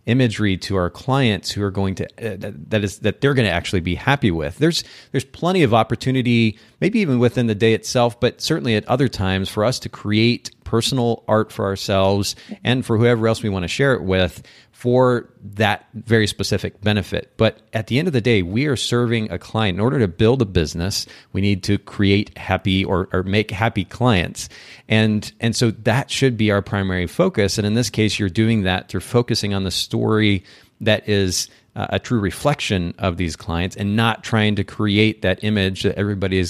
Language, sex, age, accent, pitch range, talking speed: English, male, 30-49, American, 95-115 Hz, 205 wpm